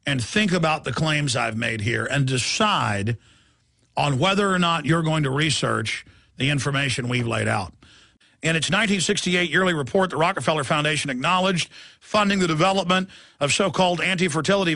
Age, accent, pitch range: 50-69, American, 145-185 Hz